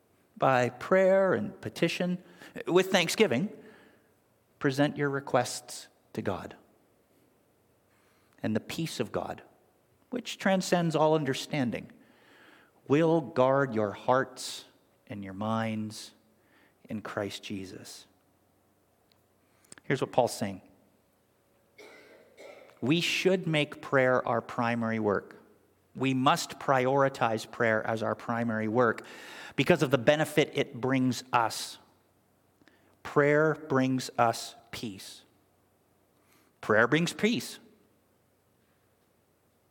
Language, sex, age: English, male, 50-69